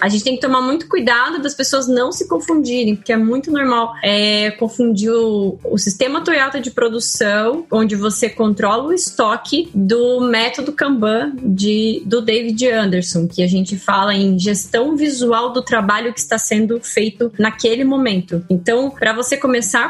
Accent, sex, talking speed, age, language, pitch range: Brazilian, female, 165 wpm, 20-39, Portuguese, 215-270 Hz